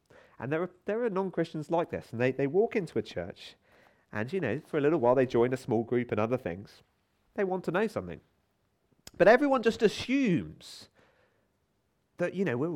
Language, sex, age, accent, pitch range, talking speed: English, male, 30-49, British, 105-175 Hz, 200 wpm